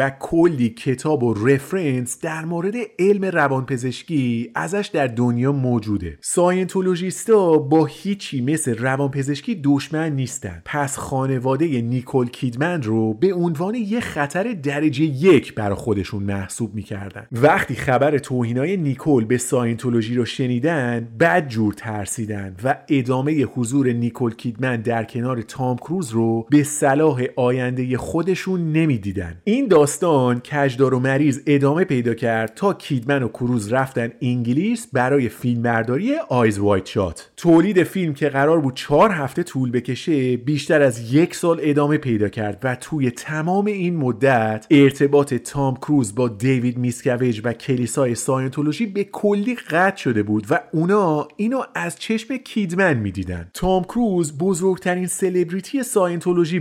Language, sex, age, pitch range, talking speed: Persian, male, 30-49, 120-170 Hz, 135 wpm